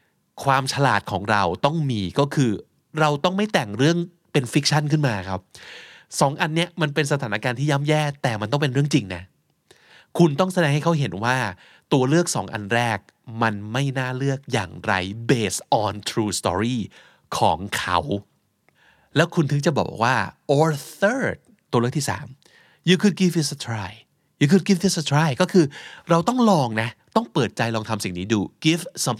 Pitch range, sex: 110-155 Hz, male